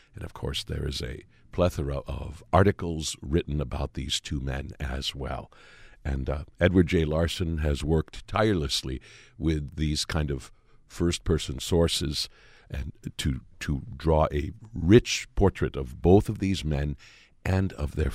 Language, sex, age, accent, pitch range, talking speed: English, male, 60-79, American, 80-110 Hz, 150 wpm